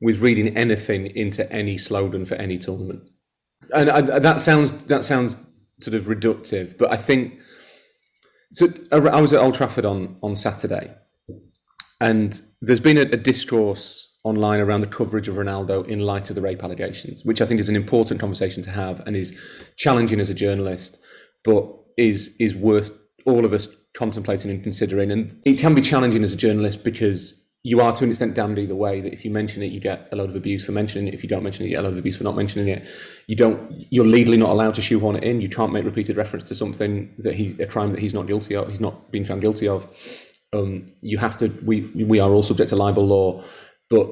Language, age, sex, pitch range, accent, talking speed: English, 30-49, male, 100-115 Hz, British, 225 wpm